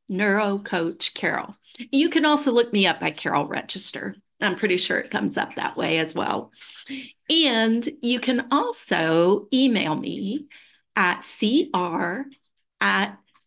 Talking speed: 140 wpm